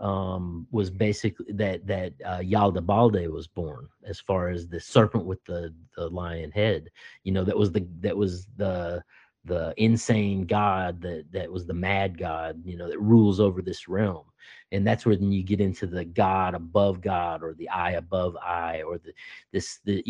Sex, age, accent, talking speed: male, 30-49, American, 190 wpm